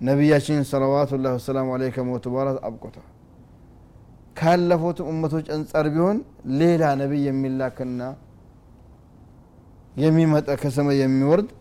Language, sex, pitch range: Amharic, male, 120-145 Hz